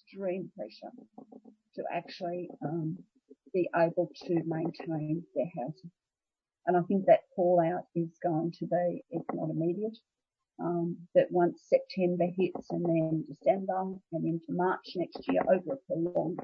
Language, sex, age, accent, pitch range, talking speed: English, female, 50-69, Australian, 160-200 Hz, 140 wpm